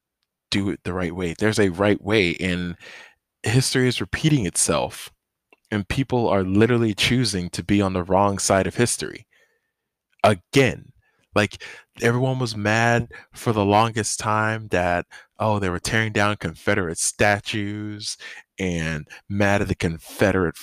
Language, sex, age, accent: English, male, 20-39, American